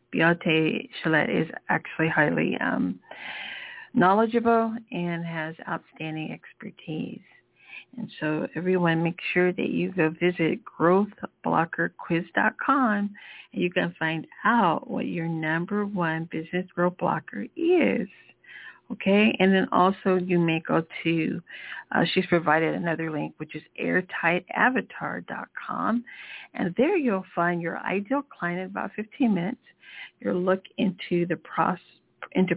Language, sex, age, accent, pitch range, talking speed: English, female, 50-69, American, 165-225 Hz, 125 wpm